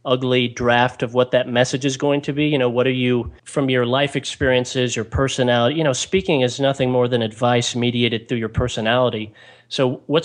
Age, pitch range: 30-49, 120-135 Hz